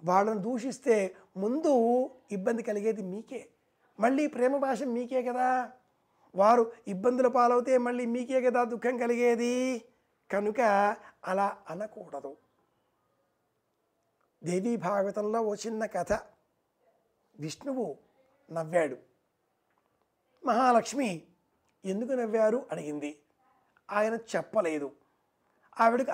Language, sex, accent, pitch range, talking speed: Telugu, male, native, 205-250 Hz, 80 wpm